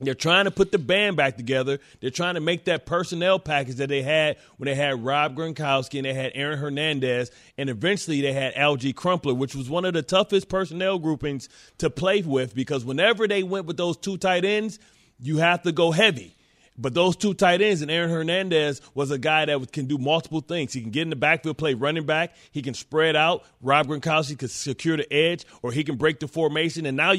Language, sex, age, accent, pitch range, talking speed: English, male, 30-49, American, 145-190 Hz, 225 wpm